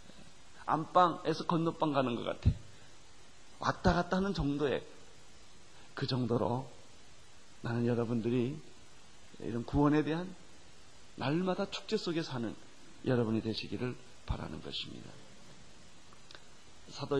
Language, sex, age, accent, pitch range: Korean, male, 40-59, native, 115-150 Hz